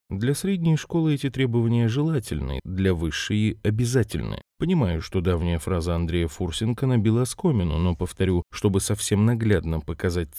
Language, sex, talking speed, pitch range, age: Russian, male, 135 wpm, 90-115 Hz, 30-49